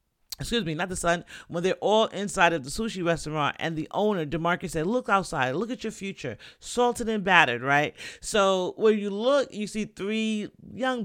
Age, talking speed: 40-59, 195 wpm